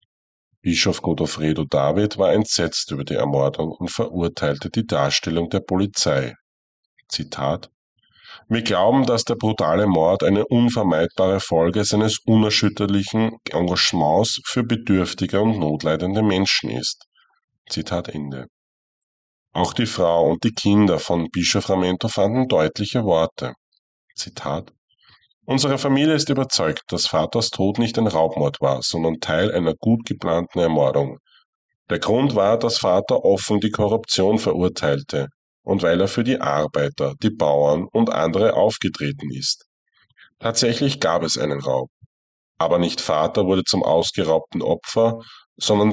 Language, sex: German, male